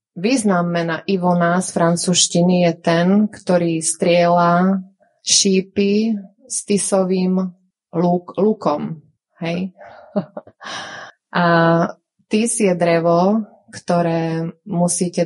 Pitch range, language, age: 170-200 Hz, Slovak, 20-39